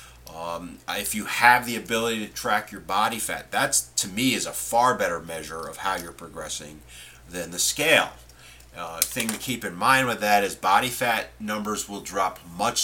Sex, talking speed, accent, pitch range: male, 190 wpm, American, 75-115 Hz